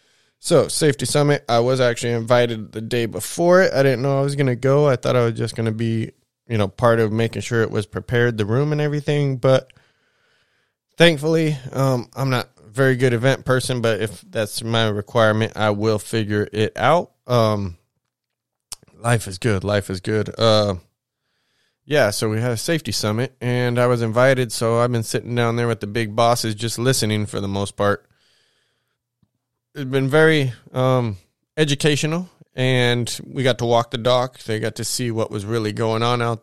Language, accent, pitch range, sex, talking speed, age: English, American, 110-130 Hz, male, 195 wpm, 20-39